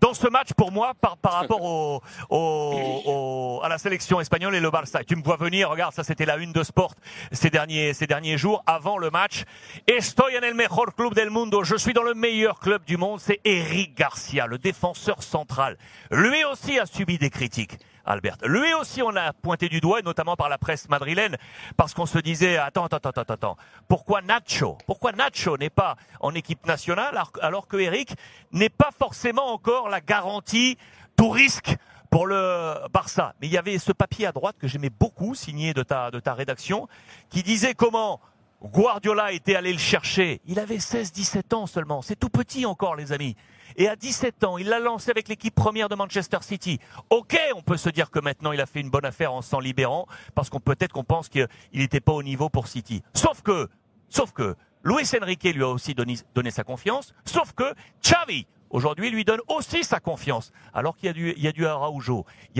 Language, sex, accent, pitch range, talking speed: French, male, French, 140-205 Hz, 215 wpm